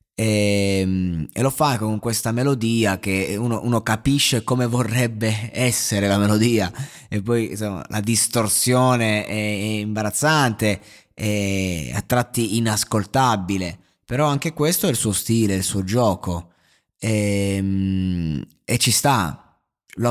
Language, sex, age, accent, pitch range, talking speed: Italian, male, 20-39, native, 95-120 Hz, 120 wpm